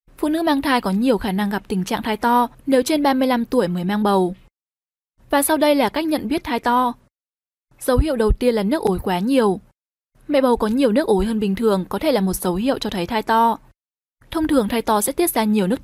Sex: female